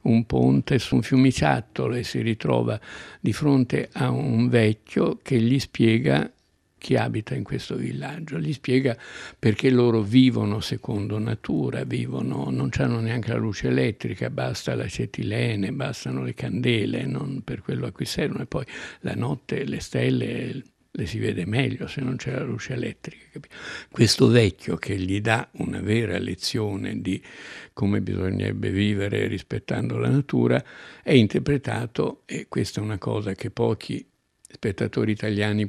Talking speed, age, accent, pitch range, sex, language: 150 wpm, 60-79, native, 105-125 Hz, male, Italian